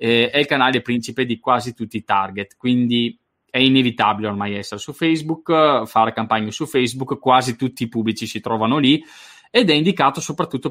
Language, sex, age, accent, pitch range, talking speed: Italian, male, 20-39, native, 115-140 Hz, 175 wpm